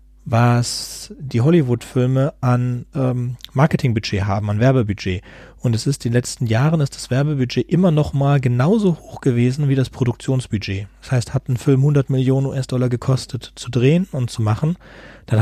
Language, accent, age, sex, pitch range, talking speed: German, German, 40-59, male, 110-135 Hz, 165 wpm